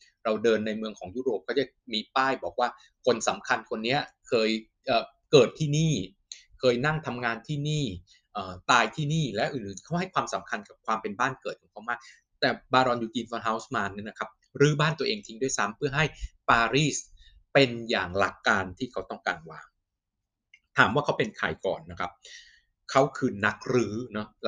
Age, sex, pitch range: 20-39, male, 110-145 Hz